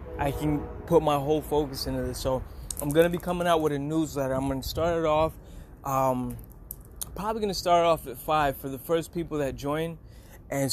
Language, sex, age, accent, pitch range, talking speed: English, male, 20-39, American, 125-150 Hz, 220 wpm